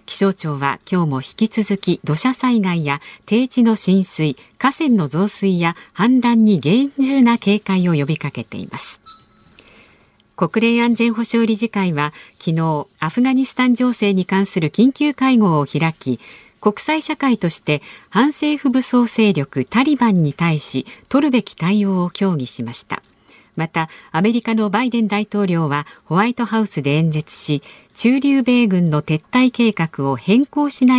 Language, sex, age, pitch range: Japanese, female, 50-69, 160-235 Hz